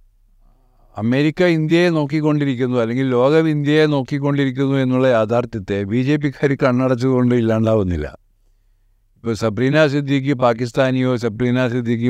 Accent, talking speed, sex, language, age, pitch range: native, 105 wpm, male, Malayalam, 60-79, 110-140 Hz